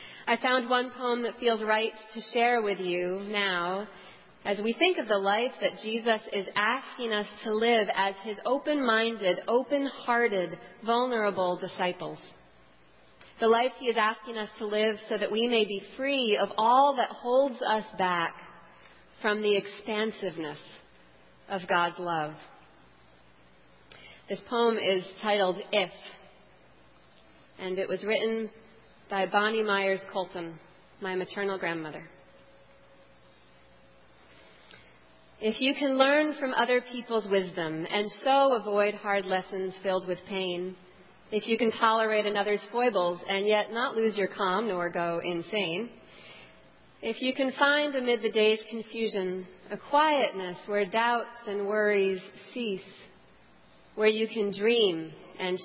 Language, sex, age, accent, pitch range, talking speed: English, female, 40-59, American, 185-230 Hz, 135 wpm